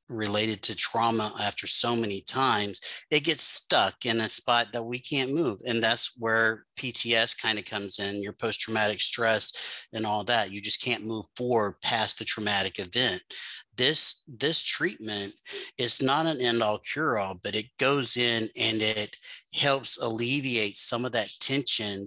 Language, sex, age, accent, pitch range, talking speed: English, male, 30-49, American, 105-115 Hz, 165 wpm